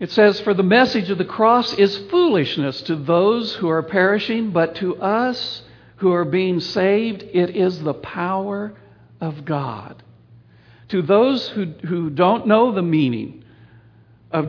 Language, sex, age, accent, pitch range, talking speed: English, male, 60-79, American, 135-200 Hz, 155 wpm